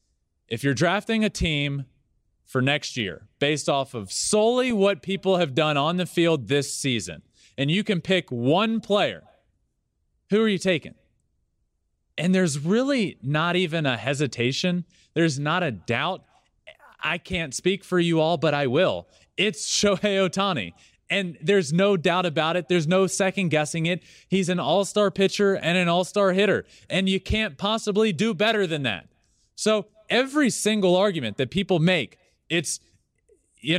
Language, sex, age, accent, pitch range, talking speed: English, male, 30-49, American, 135-195 Hz, 160 wpm